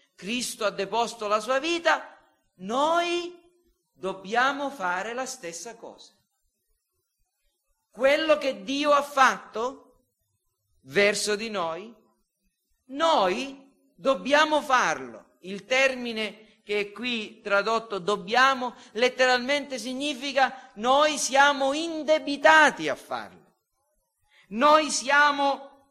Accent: native